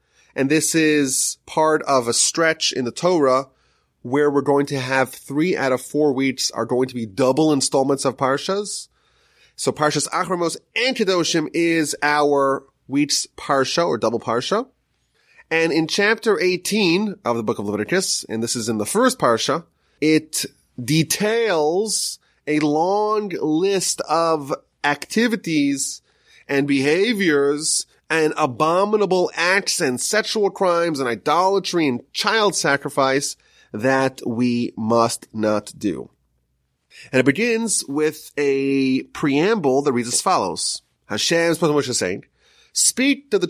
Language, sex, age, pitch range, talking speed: English, male, 30-49, 135-180 Hz, 140 wpm